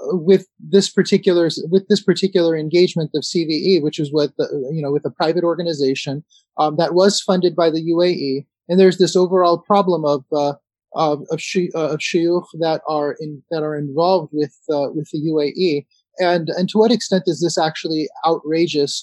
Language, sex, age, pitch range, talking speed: English, male, 30-49, 155-185 Hz, 190 wpm